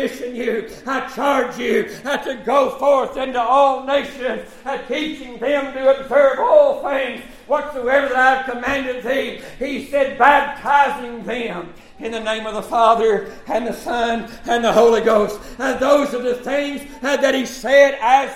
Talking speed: 155 wpm